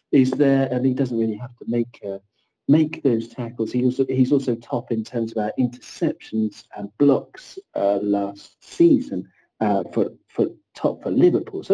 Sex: male